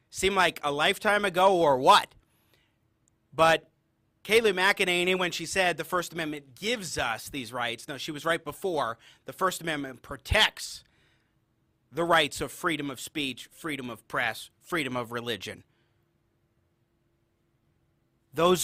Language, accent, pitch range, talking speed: English, American, 150-240 Hz, 135 wpm